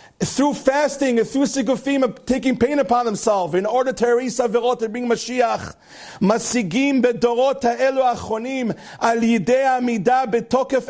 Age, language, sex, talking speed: 40-59, English, male, 140 wpm